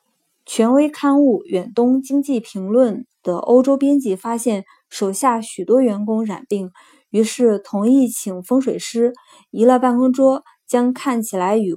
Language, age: Chinese, 20-39